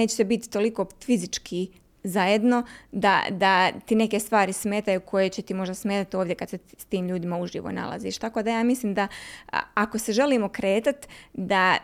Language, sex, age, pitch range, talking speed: Croatian, female, 20-39, 195-230 Hz, 180 wpm